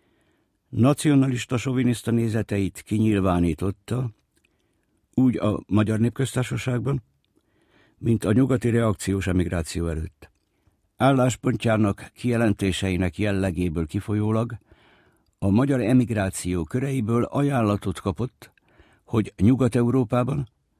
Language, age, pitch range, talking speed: Hungarian, 60-79, 95-125 Hz, 75 wpm